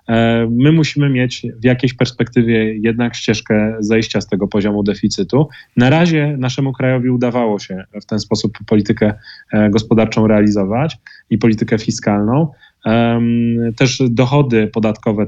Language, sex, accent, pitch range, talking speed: Polish, male, native, 110-130 Hz, 120 wpm